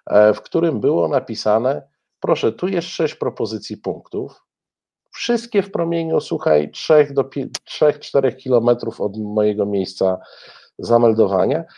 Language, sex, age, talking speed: Polish, male, 50-69, 100 wpm